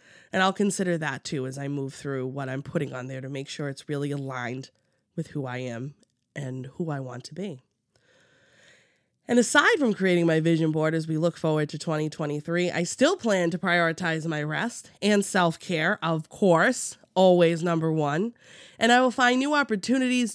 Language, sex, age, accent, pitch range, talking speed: English, female, 20-39, American, 150-200 Hz, 185 wpm